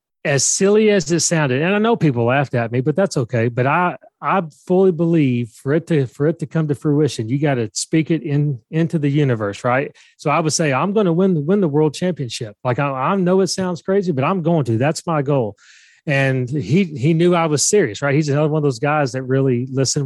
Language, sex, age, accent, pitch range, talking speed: English, male, 30-49, American, 130-165 Hz, 245 wpm